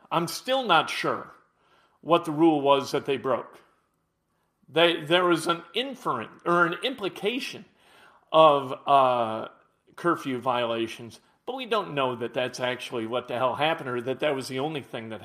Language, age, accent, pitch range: English, 50-69, American, 145-190 Hz